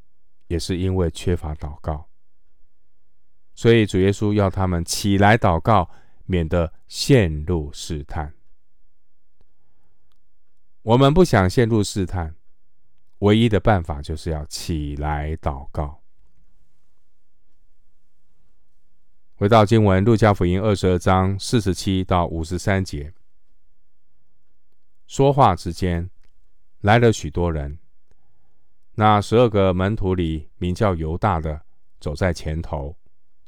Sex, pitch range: male, 80-105 Hz